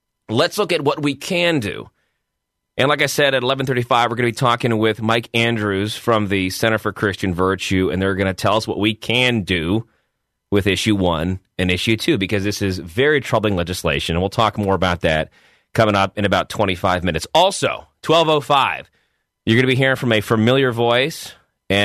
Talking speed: 200 wpm